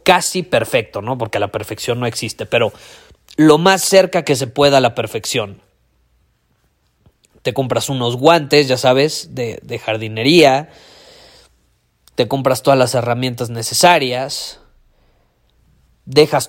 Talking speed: 125 wpm